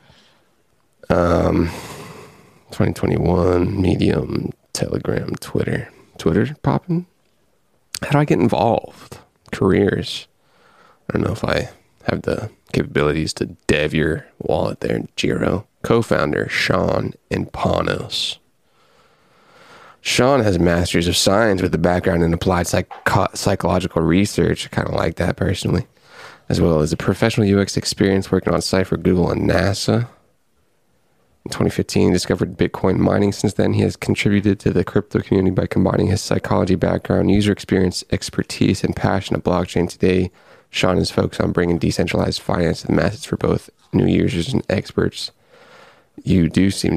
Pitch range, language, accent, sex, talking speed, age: 90-110 Hz, English, American, male, 140 wpm, 20-39